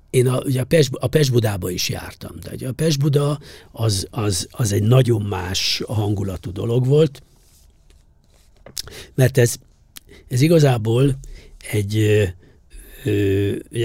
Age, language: 60-79, English